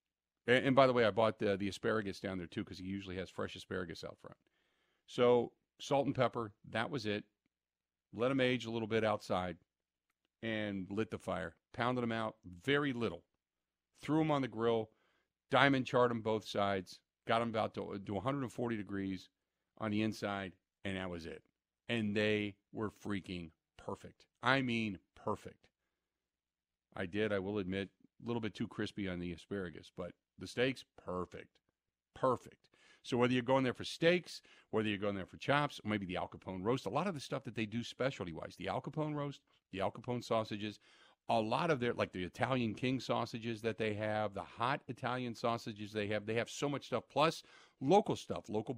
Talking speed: 195 wpm